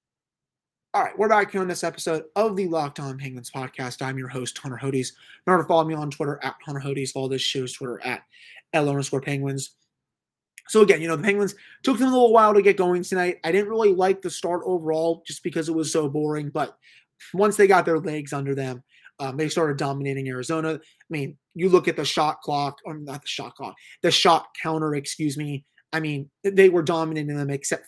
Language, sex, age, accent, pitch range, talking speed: English, male, 30-49, American, 145-180 Hz, 215 wpm